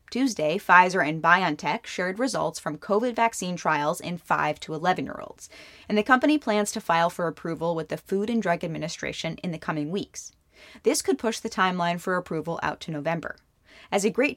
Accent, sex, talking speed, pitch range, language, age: American, female, 190 wpm, 160-215 Hz, English, 20-39